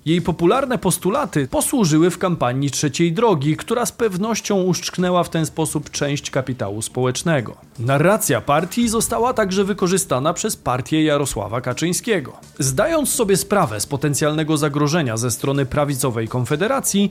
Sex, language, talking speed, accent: male, Polish, 130 wpm, native